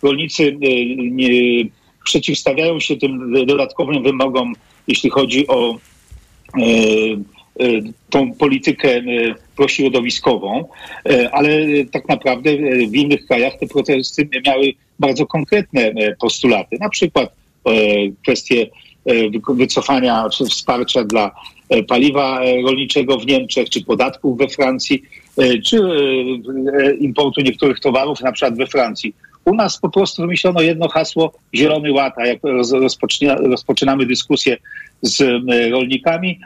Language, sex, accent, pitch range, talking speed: Polish, male, native, 130-150 Hz, 105 wpm